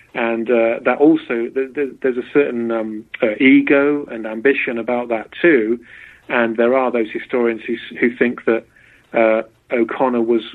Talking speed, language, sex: 155 wpm, English, male